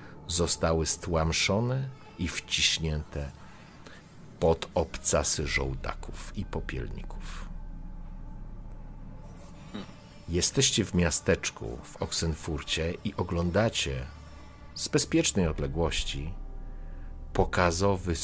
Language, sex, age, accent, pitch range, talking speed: Polish, male, 50-69, native, 75-110 Hz, 65 wpm